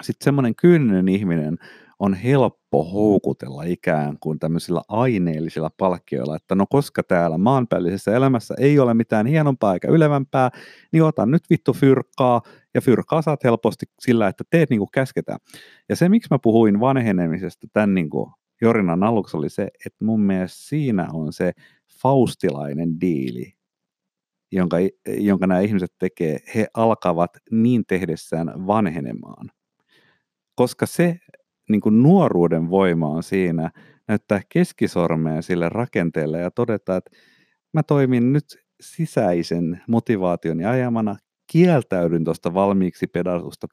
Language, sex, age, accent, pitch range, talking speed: Finnish, male, 50-69, native, 90-135 Hz, 125 wpm